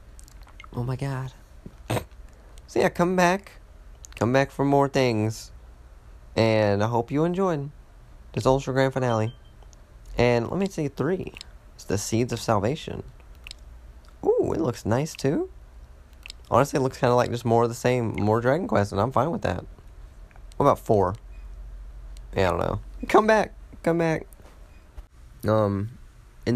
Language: English